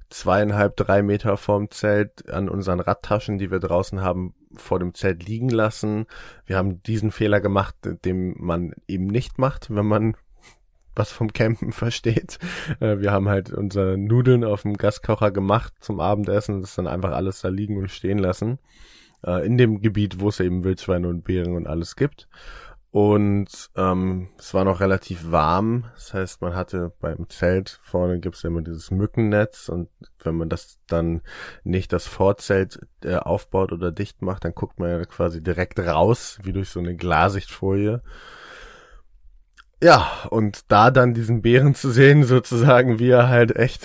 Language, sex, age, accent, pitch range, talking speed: German, male, 20-39, German, 90-110 Hz, 165 wpm